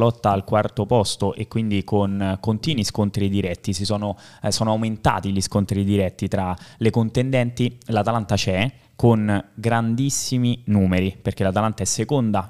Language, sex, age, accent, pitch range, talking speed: Italian, male, 20-39, native, 100-120 Hz, 150 wpm